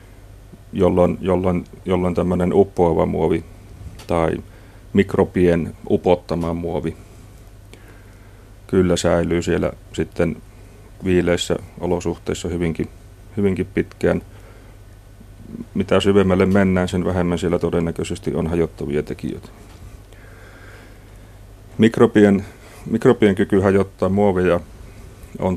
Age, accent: 40-59, native